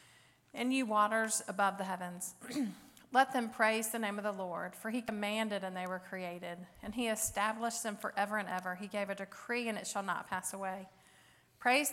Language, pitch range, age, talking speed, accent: English, 190-225 Hz, 40-59, 195 wpm, American